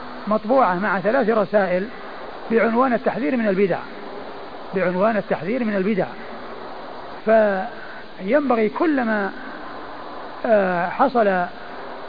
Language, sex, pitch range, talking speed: Arabic, male, 185-235 Hz, 75 wpm